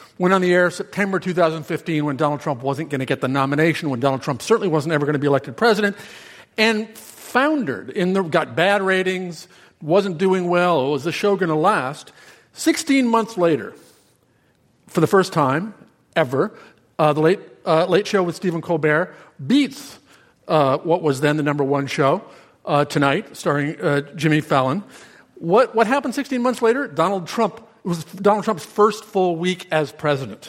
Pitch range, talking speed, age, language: 150-200 Hz, 180 wpm, 50-69, English